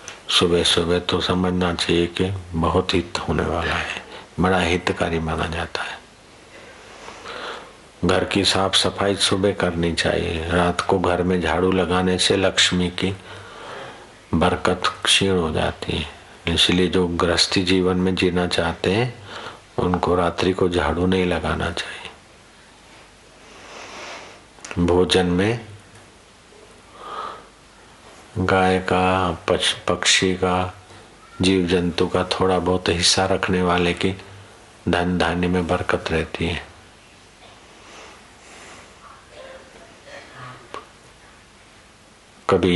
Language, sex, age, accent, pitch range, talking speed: Hindi, male, 50-69, native, 85-95 Hz, 100 wpm